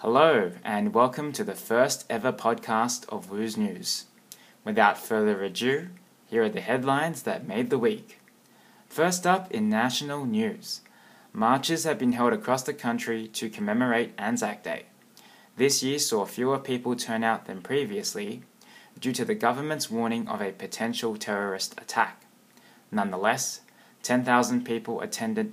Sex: male